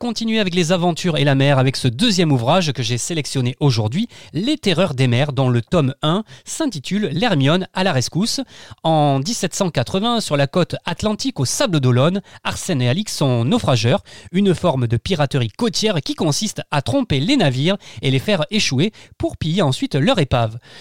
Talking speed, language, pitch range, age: 180 wpm, French, 140-205 Hz, 30-49